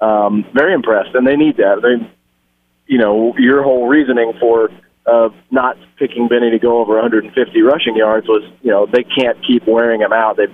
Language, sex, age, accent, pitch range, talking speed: English, male, 30-49, American, 110-125 Hz, 195 wpm